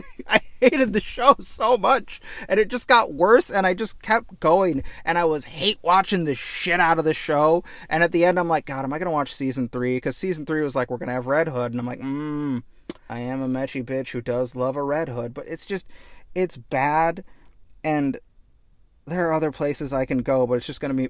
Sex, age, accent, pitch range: male, 30-49, American, 130-170 Hz